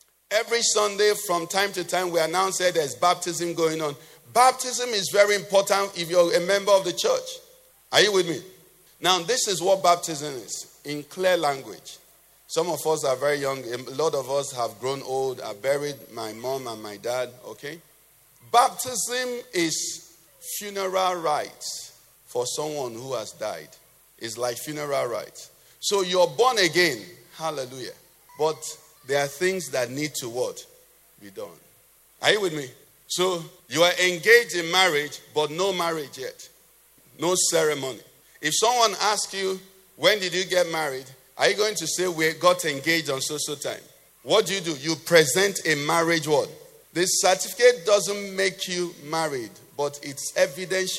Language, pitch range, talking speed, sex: English, 150-200 Hz, 165 wpm, male